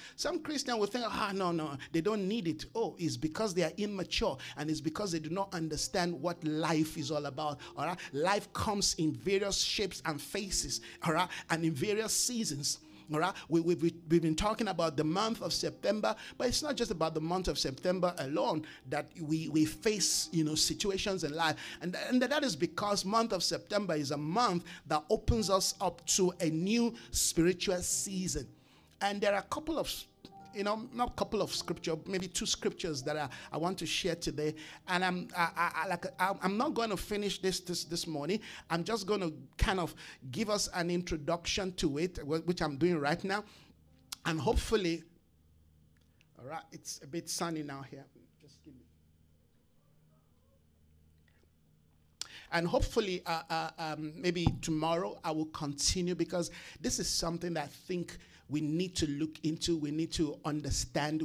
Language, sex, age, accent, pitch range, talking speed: English, male, 50-69, Nigerian, 155-190 Hz, 185 wpm